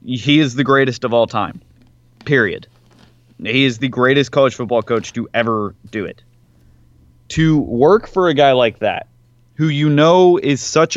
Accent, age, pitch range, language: American, 20-39, 115-145 Hz, English